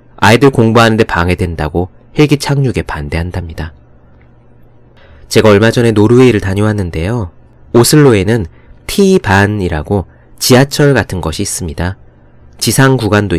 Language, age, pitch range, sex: Korean, 30-49, 85-130 Hz, male